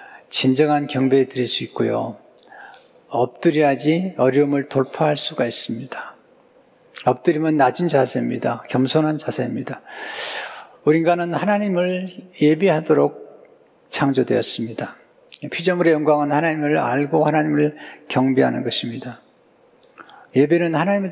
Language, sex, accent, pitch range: Korean, male, native, 130-160 Hz